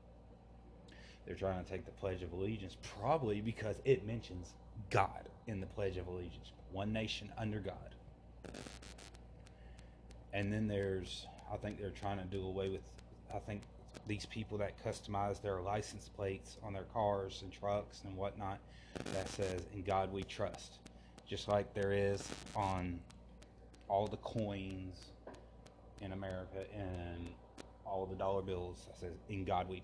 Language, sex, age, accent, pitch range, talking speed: English, male, 30-49, American, 90-105 Hz, 150 wpm